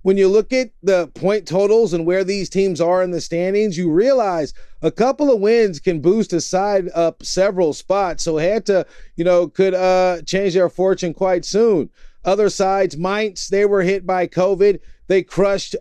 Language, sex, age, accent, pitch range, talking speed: English, male, 30-49, American, 180-200 Hz, 190 wpm